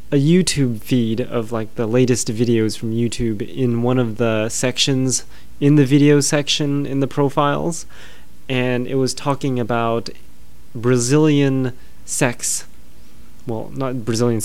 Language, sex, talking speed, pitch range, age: English, male, 135 wpm, 110-135 Hz, 20-39